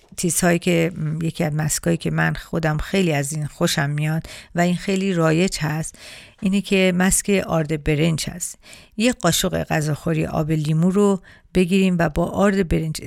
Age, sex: 50-69, female